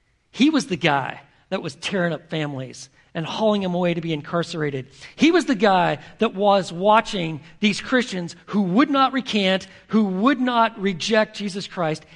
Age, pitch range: 50-69, 160-215 Hz